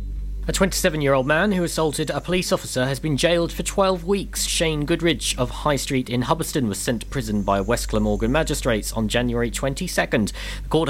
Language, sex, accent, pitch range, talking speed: English, male, British, 125-175 Hz, 185 wpm